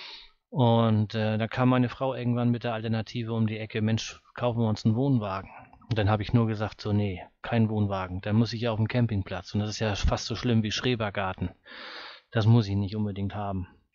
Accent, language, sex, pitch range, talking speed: German, German, male, 105-125 Hz, 220 wpm